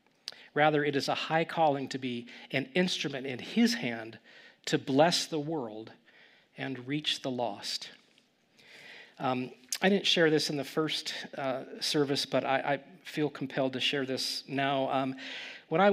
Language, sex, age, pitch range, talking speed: English, male, 40-59, 130-155 Hz, 160 wpm